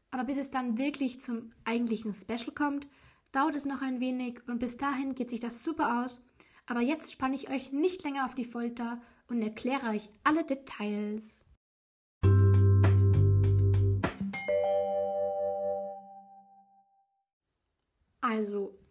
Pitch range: 225-280 Hz